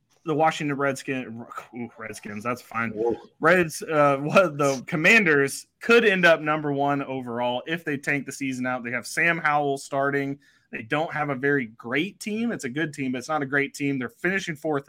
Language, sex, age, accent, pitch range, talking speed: English, male, 20-39, American, 135-175 Hz, 190 wpm